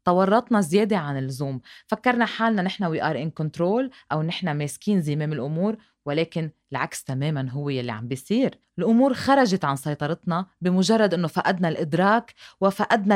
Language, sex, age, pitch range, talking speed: Arabic, female, 20-39, 160-225 Hz, 145 wpm